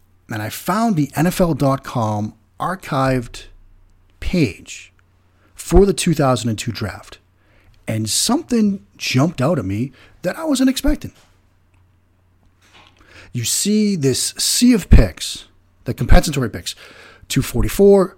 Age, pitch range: 40-59, 100-145 Hz